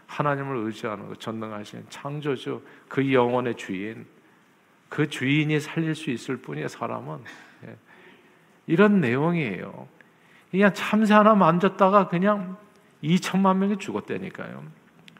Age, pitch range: 50-69, 140-195 Hz